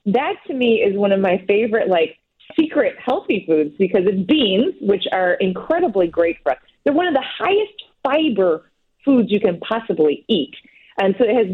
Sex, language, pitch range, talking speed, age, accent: female, English, 185-255 Hz, 185 wpm, 40-59, American